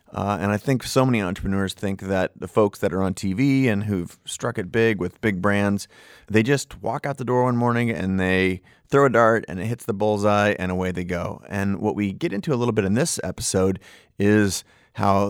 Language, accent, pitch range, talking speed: English, American, 95-120 Hz, 230 wpm